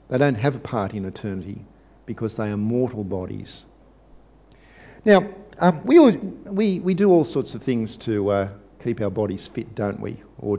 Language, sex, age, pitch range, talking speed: English, male, 50-69, 105-135 Hz, 175 wpm